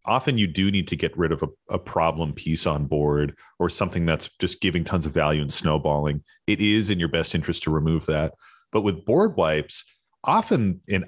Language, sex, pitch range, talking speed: English, male, 80-100 Hz, 210 wpm